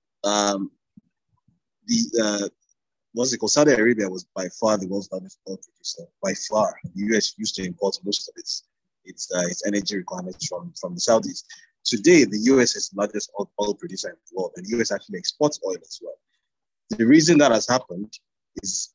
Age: 30-49